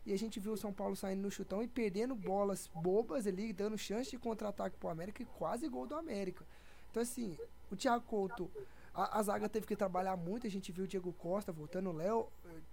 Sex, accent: male, Brazilian